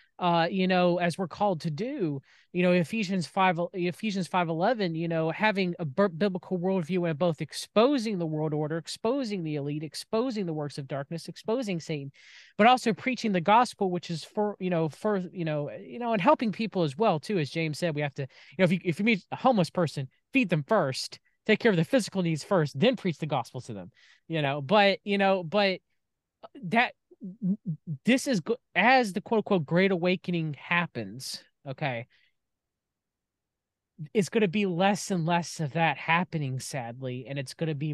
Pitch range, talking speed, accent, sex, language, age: 150-190 Hz, 195 wpm, American, male, English, 20-39